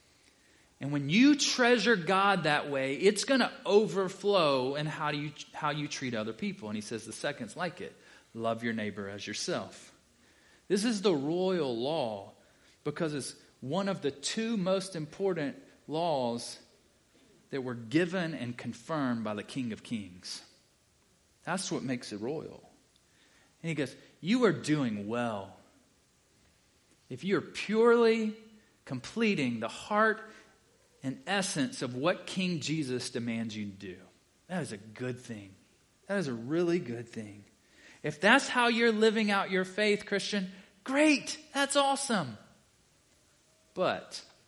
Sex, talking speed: male, 145 wpm